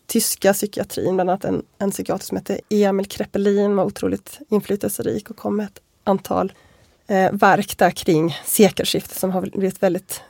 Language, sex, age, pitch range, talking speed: Swedish, female, 20-39, 195-225 Hz, 165 wpm